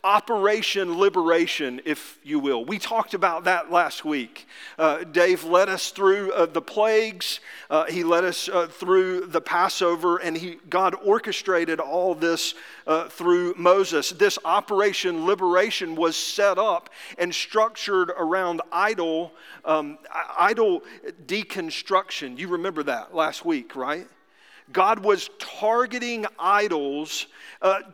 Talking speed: 130 wpm